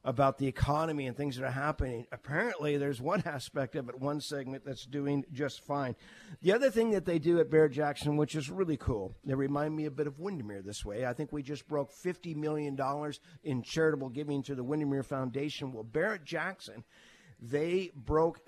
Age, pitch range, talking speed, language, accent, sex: 50-69, 130-155 Hz, 190 wpm, English, American, male